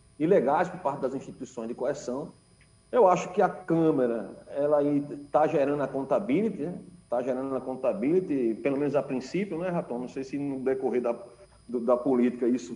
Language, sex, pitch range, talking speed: Portuguese, male, 125-170 Hz, 175 wpm